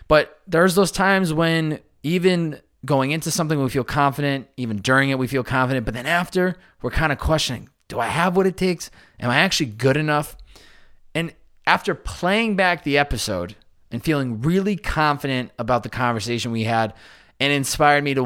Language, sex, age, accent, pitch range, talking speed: English, male, 20-39, American, 115-155 Hz, 180 wpm